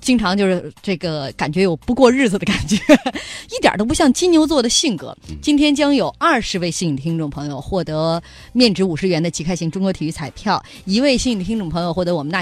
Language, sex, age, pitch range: Chinese, female, 20-39, 170-260 Hz